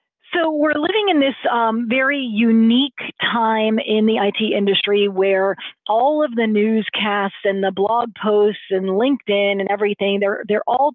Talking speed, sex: 160 wpm, female